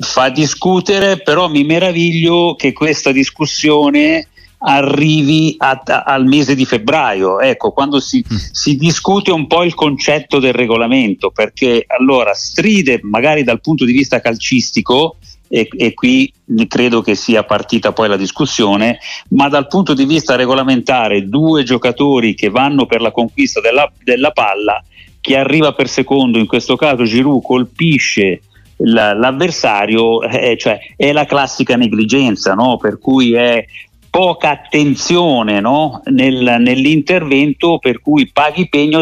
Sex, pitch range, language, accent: male, 120-155 Hz, Italian, native